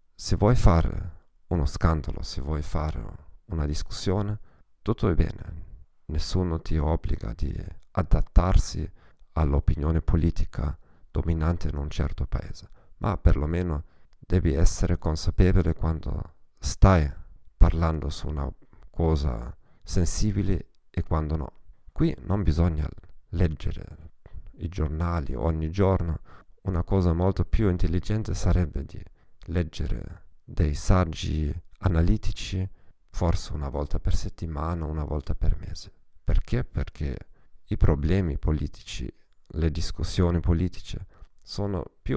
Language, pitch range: Italian, 75-95 Hz